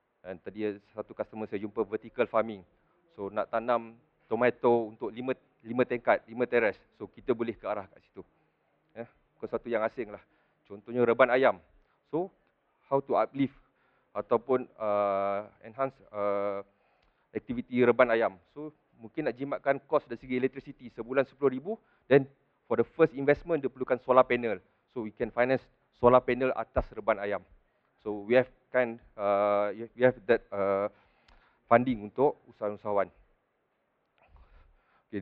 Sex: male